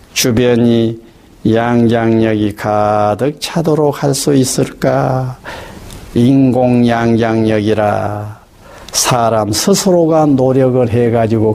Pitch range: 105-140 Hz